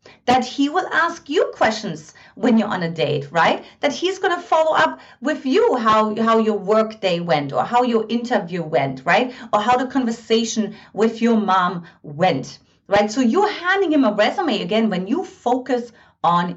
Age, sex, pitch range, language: 30-49, female, 190-300 Hz, English